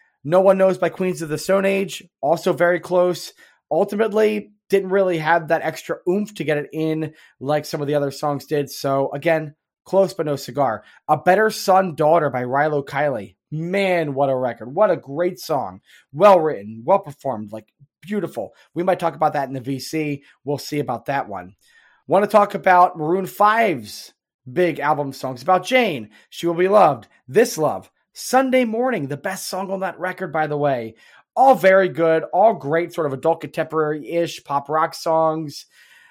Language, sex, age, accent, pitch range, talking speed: English, male, 20-39, American, 145-190 Hz, 185 wpm